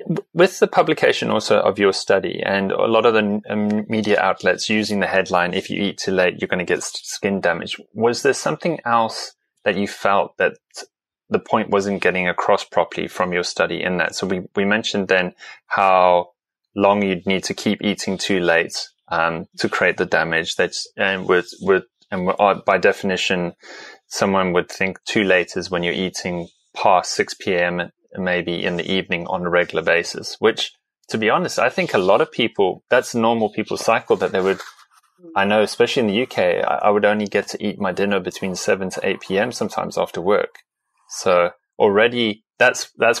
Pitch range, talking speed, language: 90-110 Hz, 185 wpm, English